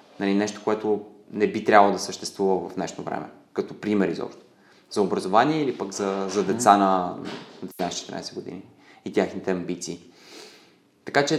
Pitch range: 95-115 Hz